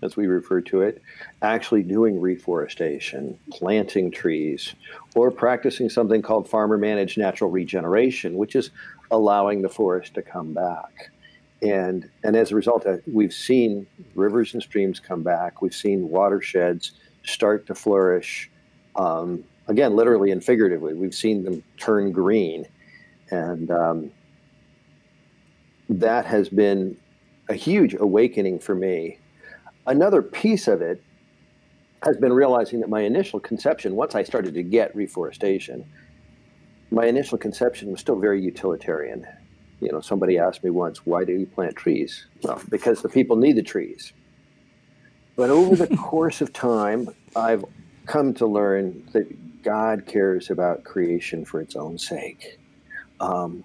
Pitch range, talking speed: 90-115 Hz, 140 wpm